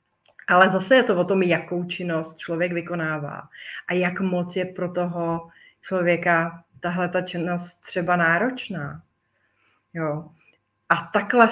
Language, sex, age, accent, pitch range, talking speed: Czech, female, 30-49, native, 170-185 Hz, 130 wpm